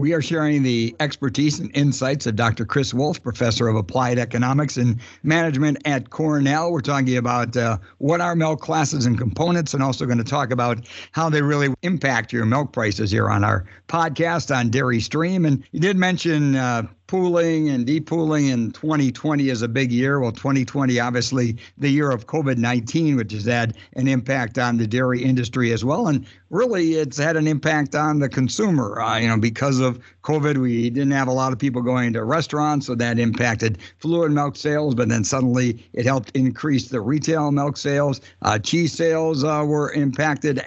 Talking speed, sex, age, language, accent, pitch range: 190 wpm, male, 60-79, English, American, 120-150 Hz